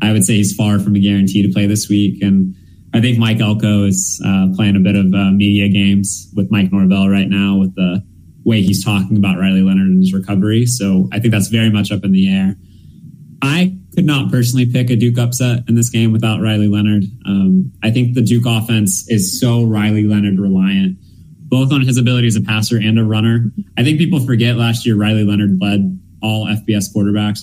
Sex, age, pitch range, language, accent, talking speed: male, 20-39, 95-115 Hz, English, American, 215 wpm